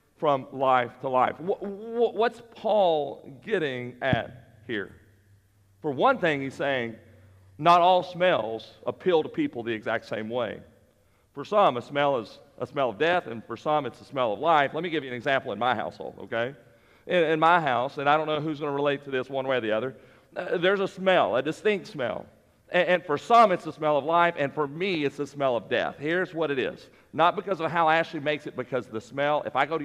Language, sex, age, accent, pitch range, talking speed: English, male, 50-69, American, 125-170 Hz, 220 wpm